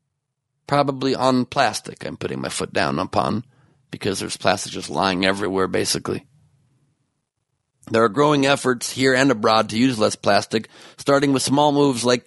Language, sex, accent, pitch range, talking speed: English, male, American, 110-140 Hz, 155 wpm